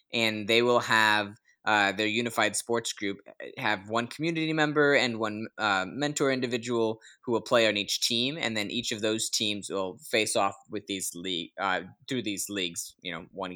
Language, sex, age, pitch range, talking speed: English, male, 20-39, 100-125 Hz, 190 wpm